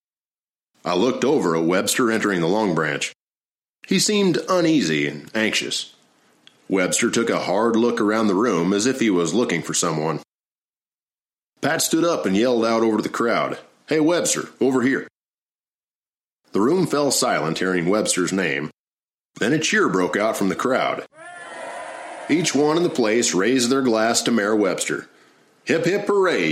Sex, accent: male, American